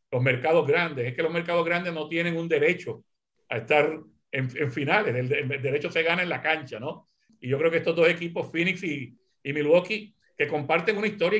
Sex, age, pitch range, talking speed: male, 60-79, 145-180 Hz, 215 wpm